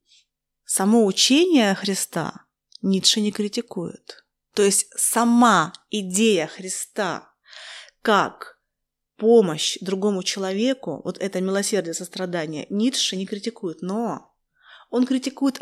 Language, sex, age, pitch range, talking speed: Russian, female, 20-39, 190-235 Hz, 95 wpm